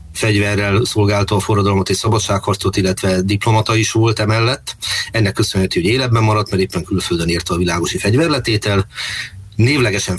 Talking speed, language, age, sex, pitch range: 140 wpm, Hungarian, 30-49, male, 95-110 Hz